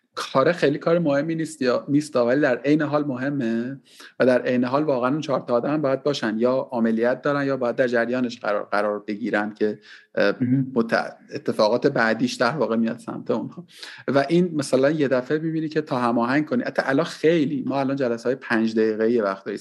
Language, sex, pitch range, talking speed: Persian, male, 115-150 Hz, 190 wpm